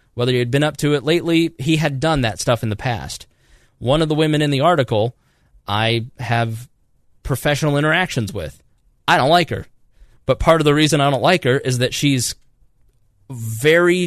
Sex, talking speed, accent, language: male, 190 wpm, American, English